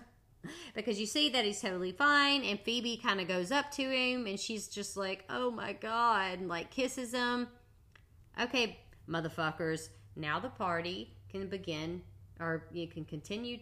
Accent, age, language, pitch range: American, 30-49, English, 160-230 Hz